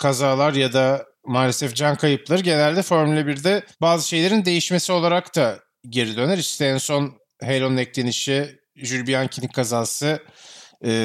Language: Turkish